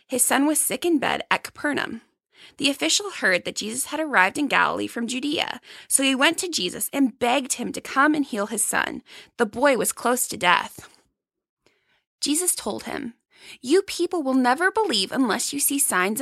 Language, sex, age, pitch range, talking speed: English, female, 20-39, 225-295 Hz, 190 wpm